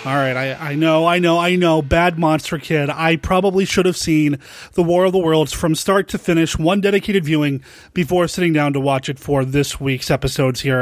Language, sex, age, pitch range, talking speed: English, male, 30-49, 155-200 Hz, 215 wpm